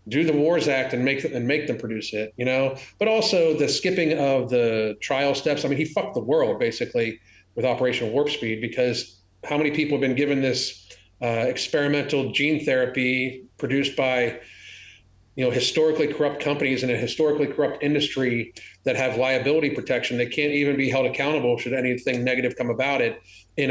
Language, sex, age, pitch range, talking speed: English, male, 40-59, 120-150 Hz, 185 wpm